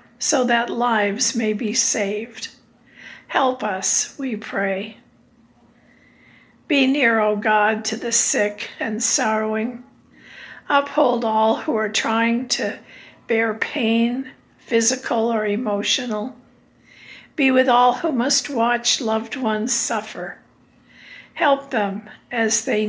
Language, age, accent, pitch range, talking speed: English, 60-79, American, 220-255 Hz, 115 wpm